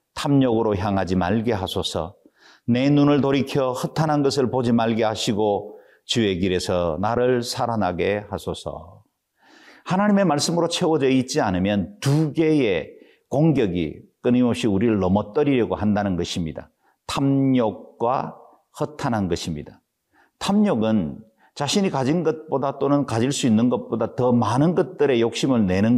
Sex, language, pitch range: male, Korean, 100-145 Hz